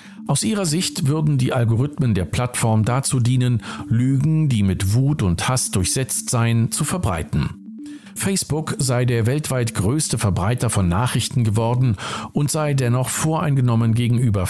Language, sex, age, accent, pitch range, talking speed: German, male, 50-69, German, 105-150 Hz, 140 wpm